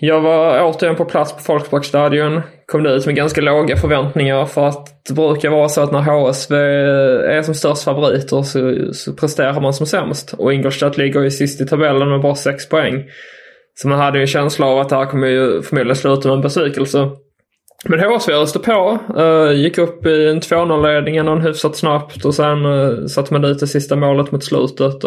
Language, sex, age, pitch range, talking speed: English, male, 20-39, 135-155 Hz, 200 wpm